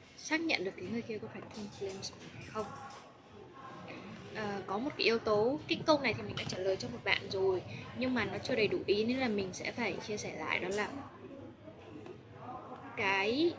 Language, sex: Vietnamese, female